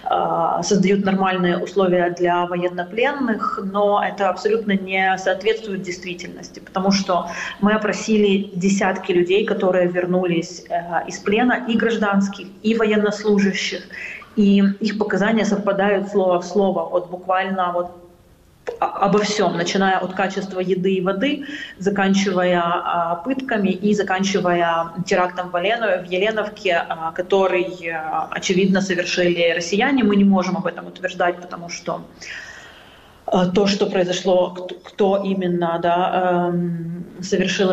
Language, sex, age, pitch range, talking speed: Ukrainian, female, 30-49, 175-195 Hz, 110 wpm